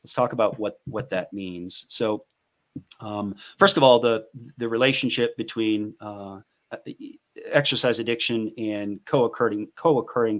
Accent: American